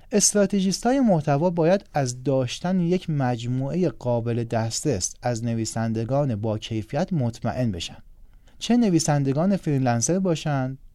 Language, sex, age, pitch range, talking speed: Persian, male, 30-49, 115-155 Hz, 105 wpm